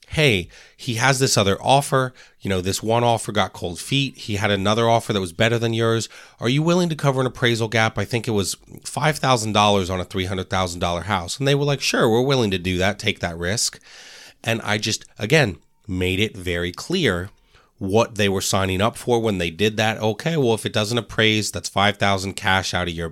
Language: English